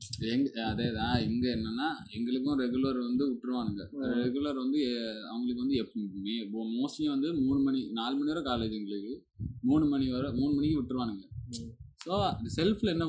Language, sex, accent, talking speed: Tamil, male, native, 150 wpm